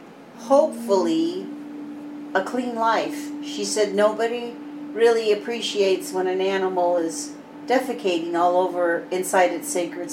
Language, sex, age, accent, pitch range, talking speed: English, female, 50-69, American, 175-235 Hz, 115 wpm